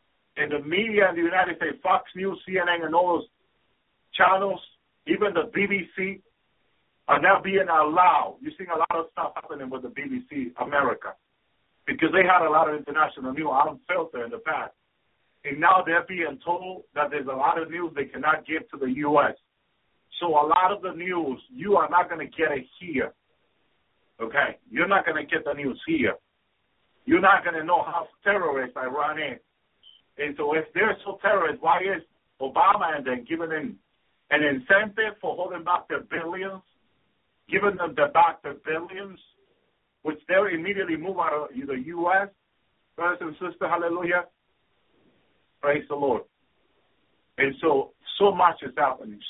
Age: 50-69